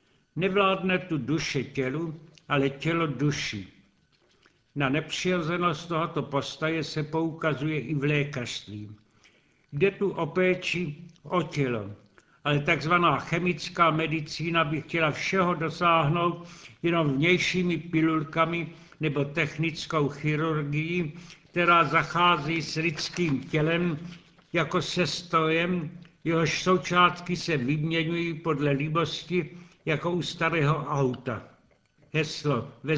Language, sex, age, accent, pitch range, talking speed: Czech, male, 70-89, native, 145-170 Hz, 100 wpm